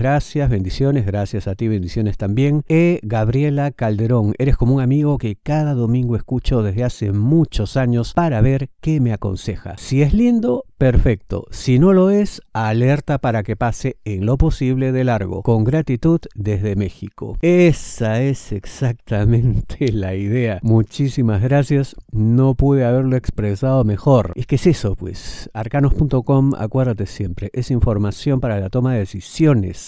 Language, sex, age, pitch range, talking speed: Spanish, male, 50-69, 105-140 Hz, 150 wpm